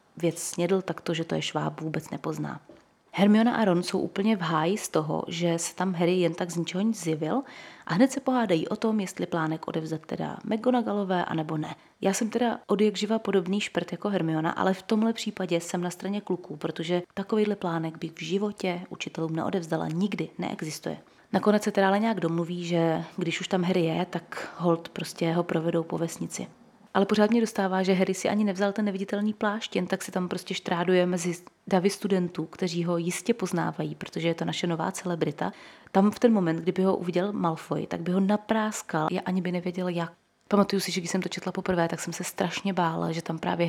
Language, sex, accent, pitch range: Czech, female, native, 170-205 Hz